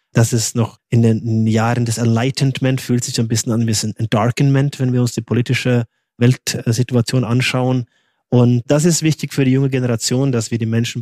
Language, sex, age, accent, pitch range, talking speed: German, male, 20-39, German, 115-130 Hz, 195 wpm